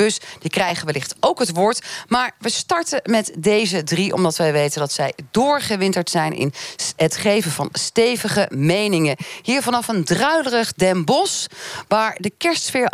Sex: female